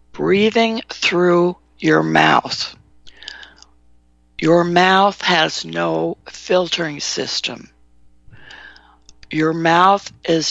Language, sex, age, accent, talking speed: English, female, 60-79, American, 75 wpm